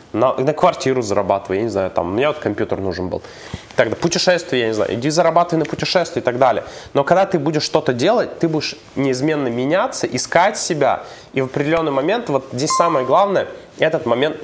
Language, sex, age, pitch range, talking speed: Russian, male, 20-39, 115-155 Hz, 195 wpm